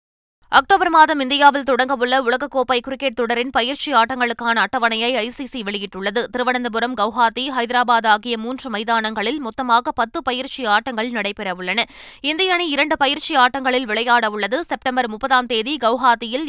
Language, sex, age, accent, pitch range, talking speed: Tamil, female, 20-39, native, 230-275 Hz, 120 wpm